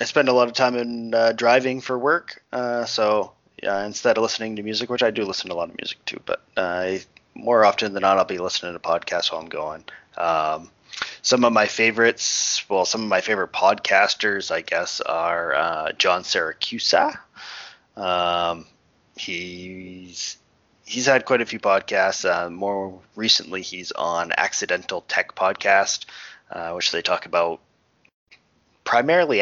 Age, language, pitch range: 20-39, English, 85-115 Hz